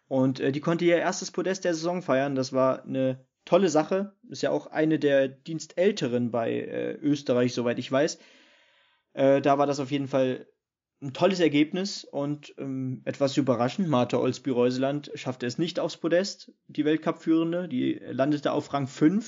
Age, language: 20-39, German